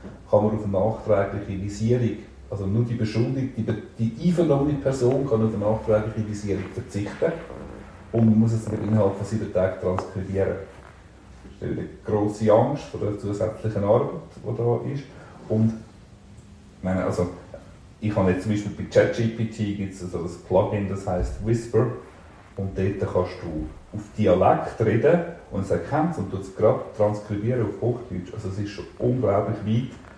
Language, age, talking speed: German, 40-59, 165 wpm